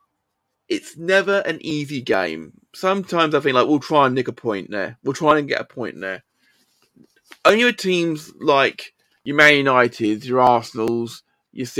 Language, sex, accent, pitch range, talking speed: English, male, British, 125-170 Hz, 170 wpm